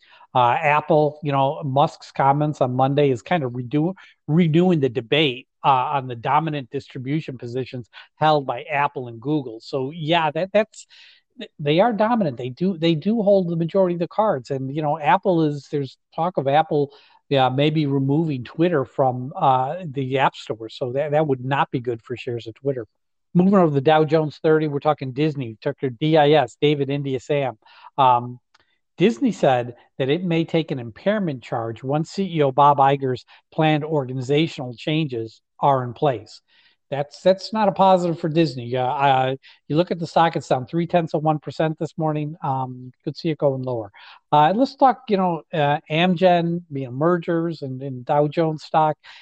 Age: 50-69